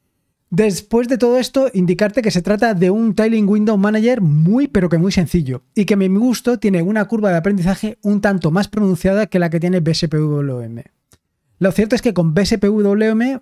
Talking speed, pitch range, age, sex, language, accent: 190 wpm, 160-210 Hz, 20-39, male, Spanish, Spanish